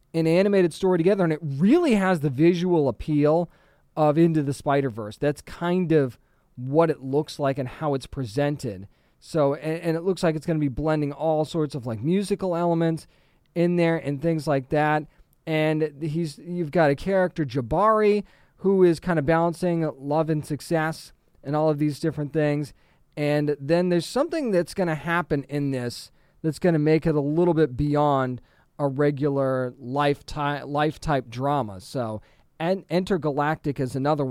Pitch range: 140-170 Hz